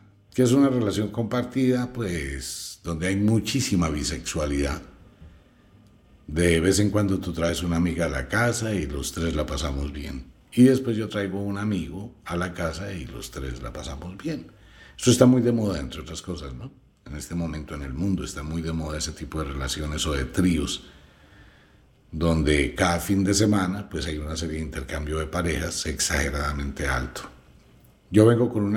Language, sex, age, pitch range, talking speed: Spanish, male, 60-79, 75-105 Hz, 180 wpm